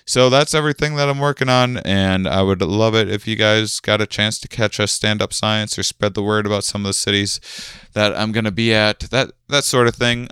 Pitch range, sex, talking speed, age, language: 90-120 Hz, male, 255 wpm, 20-39, English